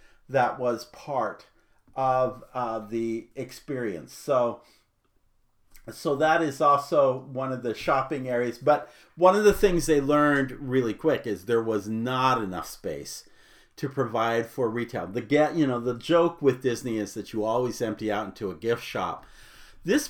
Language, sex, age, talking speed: English, male, 50-69, 165 wpm